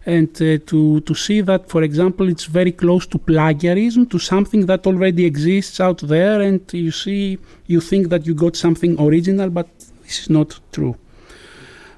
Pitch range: 155-190 Hz